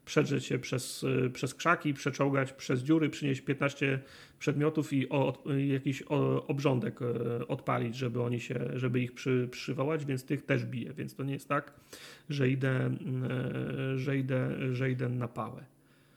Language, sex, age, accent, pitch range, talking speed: Polish, male, 30-49, native, 130-145 Hz, 150 wpm